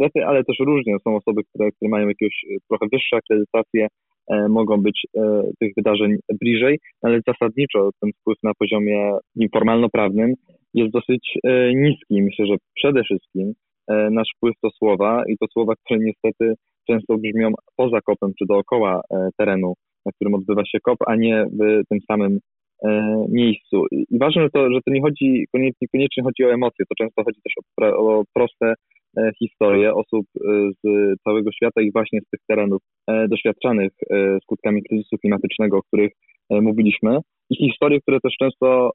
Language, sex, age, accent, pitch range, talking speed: Polish, male, 20-39, native, 105-125 Hz, 165 wpm